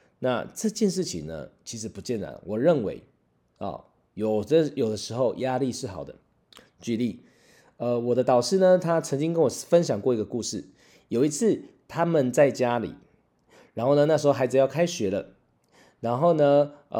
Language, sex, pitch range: Chinese, male, 110-145 Hz